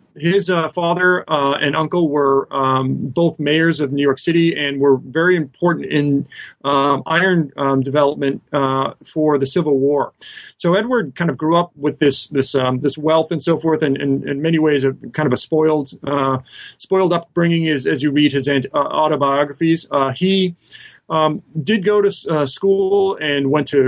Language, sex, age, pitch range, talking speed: English, male, 30-49, 140-170 Hz, 190 wpm